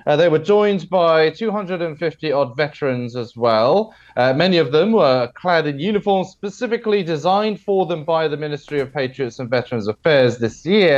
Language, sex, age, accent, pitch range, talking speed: English, male, 30-49, British, 125-180 Hz, 170 wpm